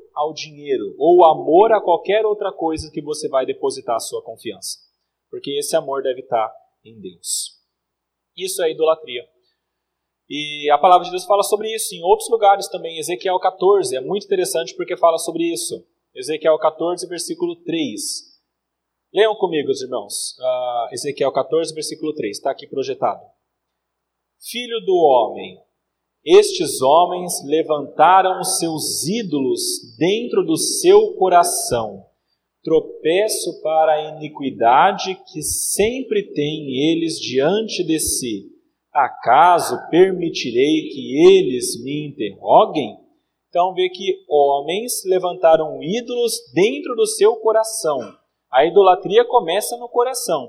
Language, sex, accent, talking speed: Portuguese, male, Brazilian, 125 wpm